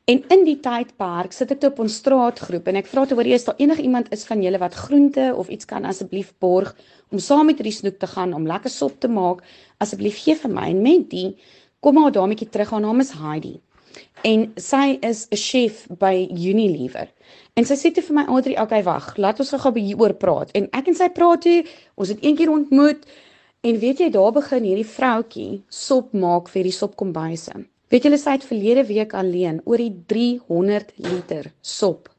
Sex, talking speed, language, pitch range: female, 215 wpm, English, 195-275 Hz